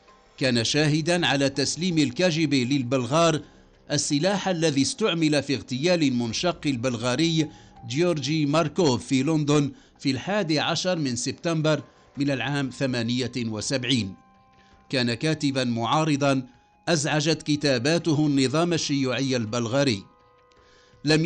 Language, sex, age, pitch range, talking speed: English, male, 50-69, 125-165 Hz, 95 wpm